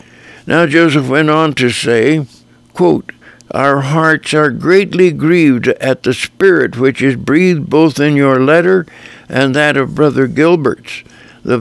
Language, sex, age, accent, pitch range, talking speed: English, male, 60-79, American, 130-160 Hz, 140 wpm